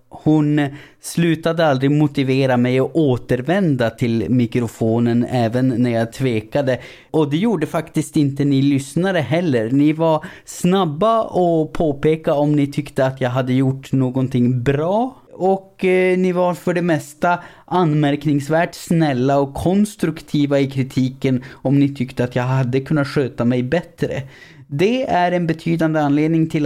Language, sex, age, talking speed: Swedish, male, 30-49, 145 wpm